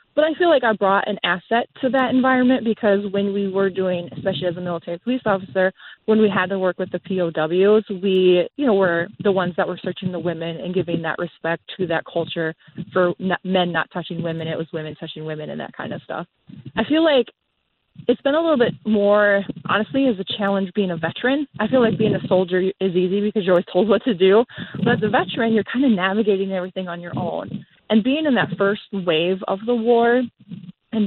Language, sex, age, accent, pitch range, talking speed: English, female, 20-39, American, 175-220 Hz, 225 wpm